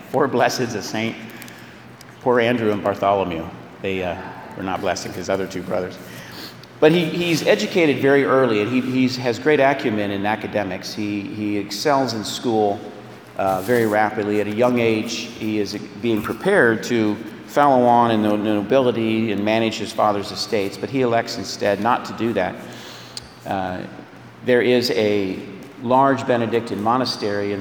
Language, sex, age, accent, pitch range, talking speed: English, male, 40-59, American, 100-125 Hz, 160 wpm